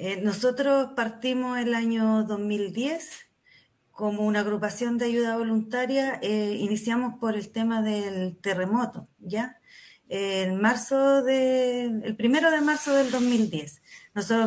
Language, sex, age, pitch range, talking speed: Spanish, female, 30-49, 200-245 Hz, 125 wpm